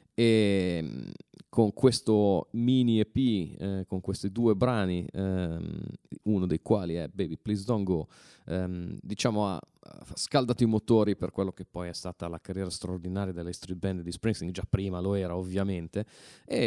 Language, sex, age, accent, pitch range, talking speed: Italian, male, 30-49, native, 95-120 Hz, 160 wpm